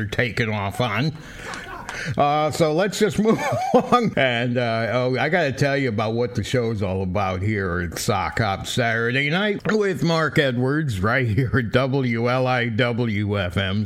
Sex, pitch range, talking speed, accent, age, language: male, 115-155 Hz, 150 wpm, American, 60-79, English